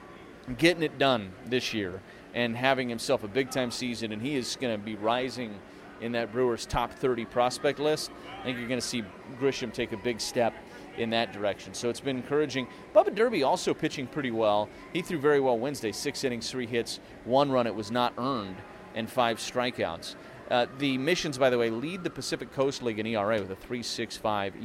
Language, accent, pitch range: English, American, 115-140 Hz